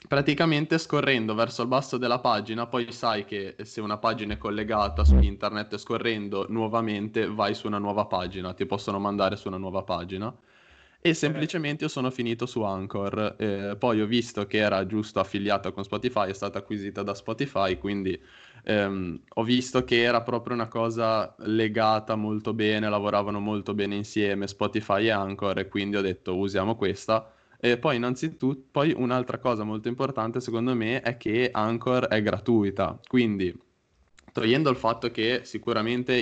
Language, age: Italian, 20-39